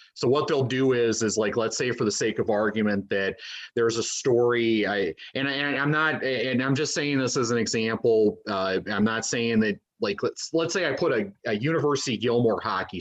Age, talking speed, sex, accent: 30-49, 210 wpm, male, American